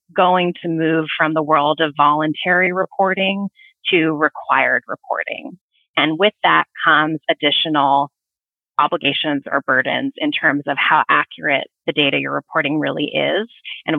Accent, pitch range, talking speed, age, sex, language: American, 145-175 Hz, 135 wpm, 30-49, female, English